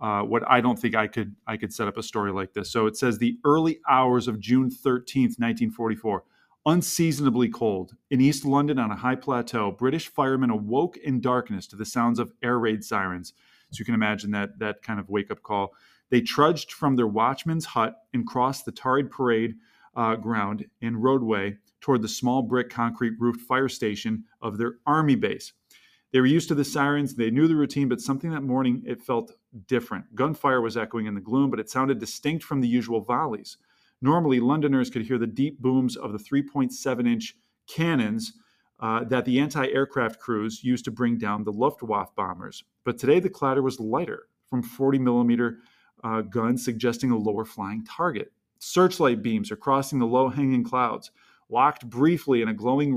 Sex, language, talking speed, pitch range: male, English, 185 wpm, 115-135 Hz